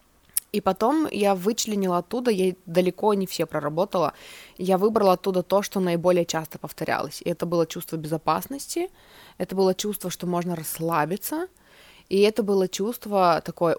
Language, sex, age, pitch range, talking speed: Russian, female, 20-39, 170-200 Hz, 150 wpm